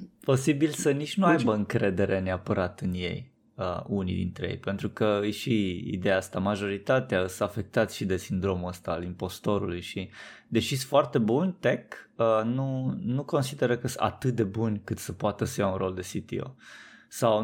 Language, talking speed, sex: Romanian, 180 wpm, male